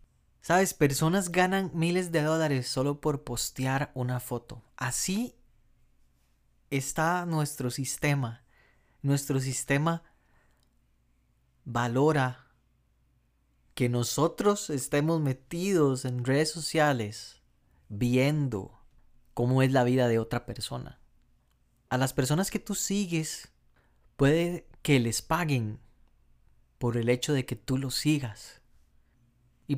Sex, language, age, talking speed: male, Spanish, 30-49, 105 wpm